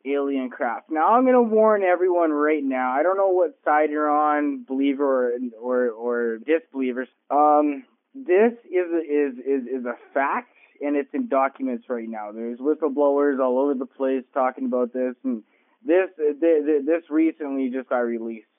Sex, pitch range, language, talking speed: male, 130-160 Hz, English, 175 wpm